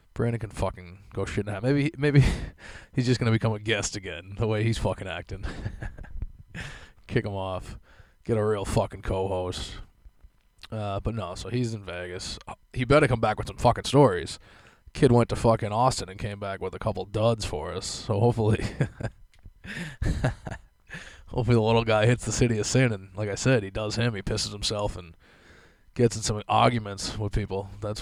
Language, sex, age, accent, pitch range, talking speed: English, male, 20-39, American, 95-120 Hz, 185 wpm